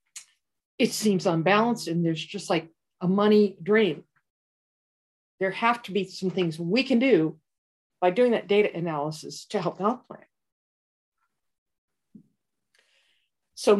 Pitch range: 180-225 Hz